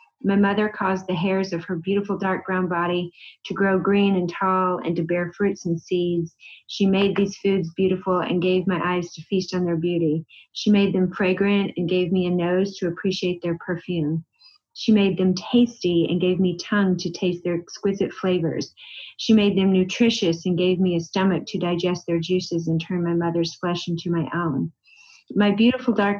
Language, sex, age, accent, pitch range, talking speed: English, female, 40-59, American, 175-200 Hz, 195 wpm